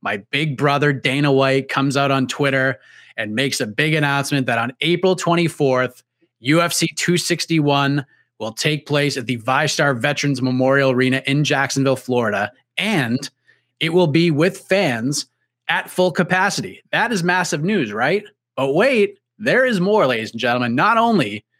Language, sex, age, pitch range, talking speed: English, male, 30-49, 135-170 Hz, 155 wpm